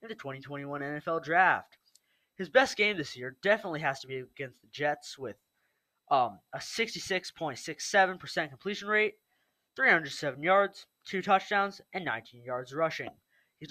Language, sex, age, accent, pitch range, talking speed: English, male, 20-39, American, 145-190 Hz, 140 wpm